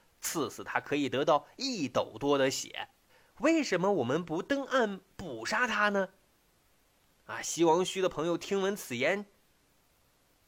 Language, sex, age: Chinese, male, 30-49